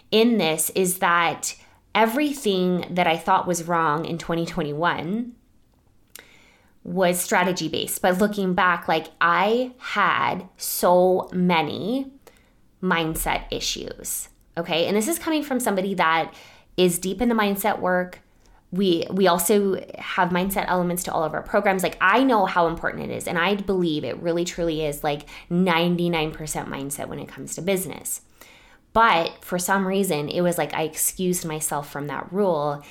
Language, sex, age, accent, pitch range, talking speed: English, female, 20-39, American, 165-195 Hz, 155 wpm